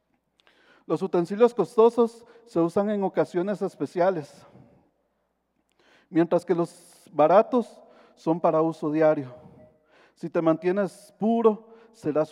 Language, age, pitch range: Spanish, 40-59, 170-205 Hz